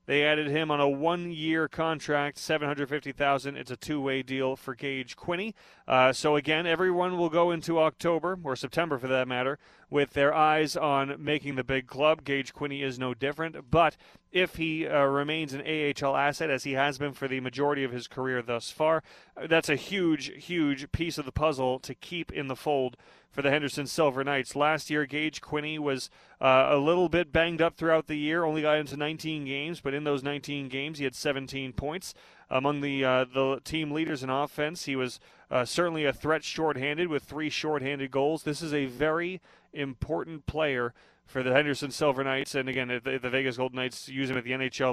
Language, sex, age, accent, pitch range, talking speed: English, male, 30-49, American, 135-155 Hz, 200 wpm